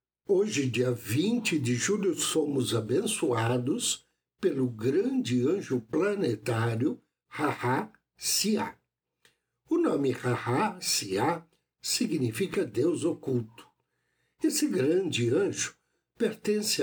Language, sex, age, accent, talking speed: Portuguese, male, 60-79, Brazilian, 85 wpm